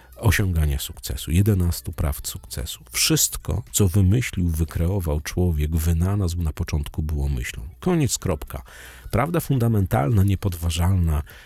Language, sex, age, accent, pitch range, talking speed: Polish, male, 40-59, native, 85-115 Hz, 105 wpm